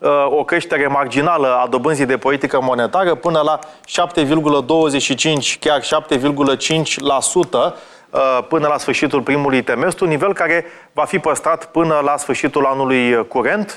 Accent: native